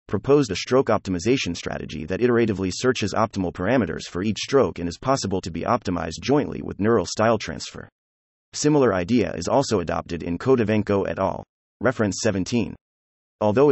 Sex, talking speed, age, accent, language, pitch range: male, 160 wpm, 30-49, American, English, 85-125 Hz